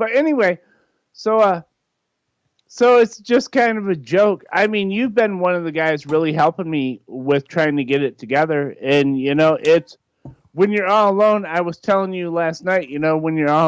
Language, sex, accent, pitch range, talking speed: English, male, American, 140-185 Hz, 205 wpm